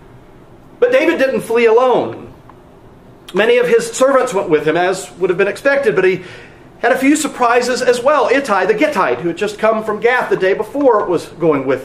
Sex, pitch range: male, 175-260 Hz